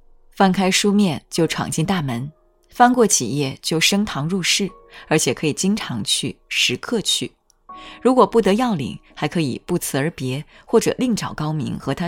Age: 20-39